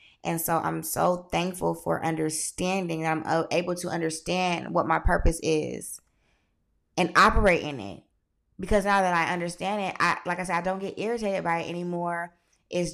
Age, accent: 20-39, American